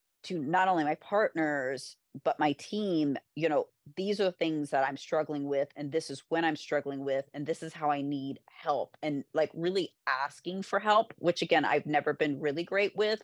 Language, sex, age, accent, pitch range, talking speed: English, female, 30-49, American, 145-170 Hz, 210 wpm